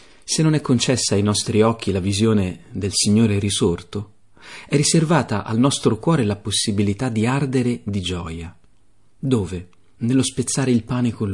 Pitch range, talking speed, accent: 100-125 Hz, 155 wpm, native